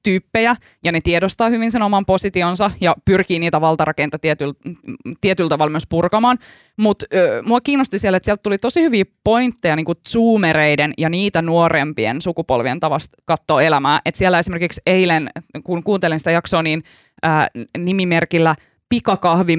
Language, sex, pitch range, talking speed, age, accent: Finnish, female, 160-215 Hz, 150 wpm, 20-39, native